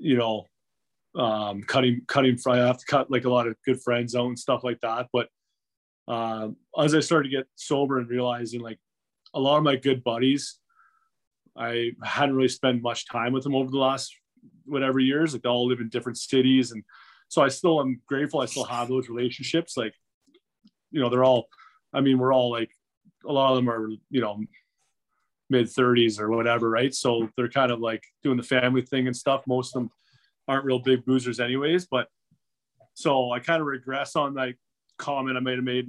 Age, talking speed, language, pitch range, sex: 30-49, 200 wpm, English, 115-135 Hz, male